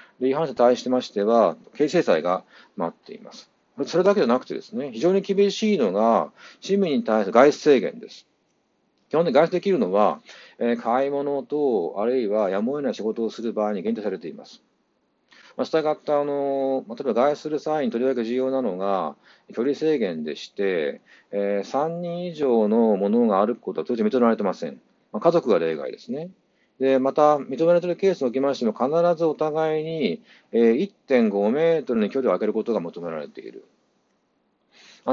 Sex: male